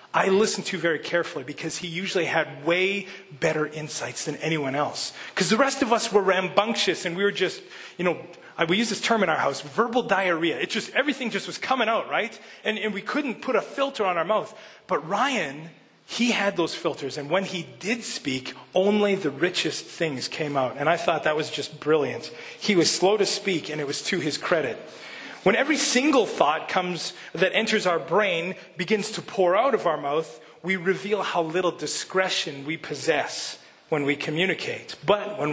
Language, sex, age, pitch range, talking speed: English, male, 30-49, 150-200 Hz, 200 wpm